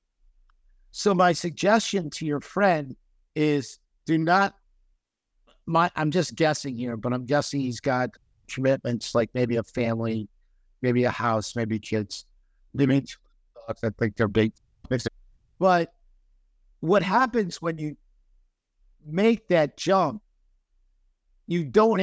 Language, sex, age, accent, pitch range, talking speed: English, male, 60-79, American, 105-165 Hz, 115 wpm